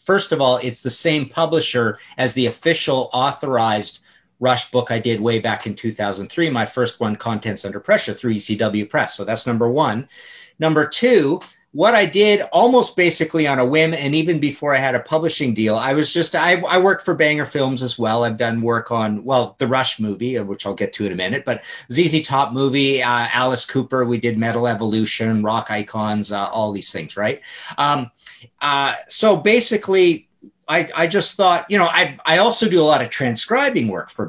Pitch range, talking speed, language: 115-160 Hz, 200 wpm, English